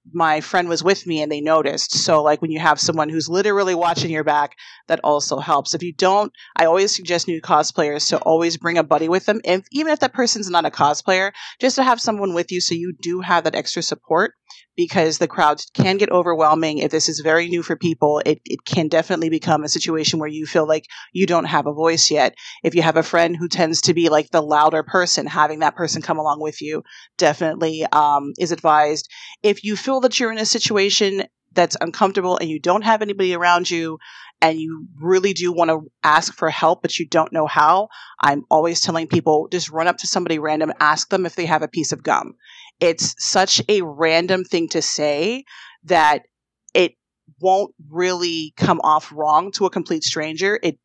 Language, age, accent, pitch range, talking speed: English, 30-49, American, 155-185 Hz, 215 wpm